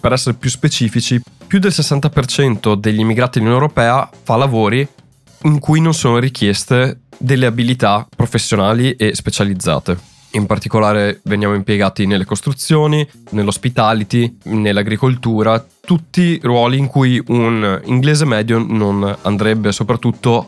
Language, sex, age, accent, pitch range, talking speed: Italian, male, 20-39, native, 105-125 Hz, 120 wpm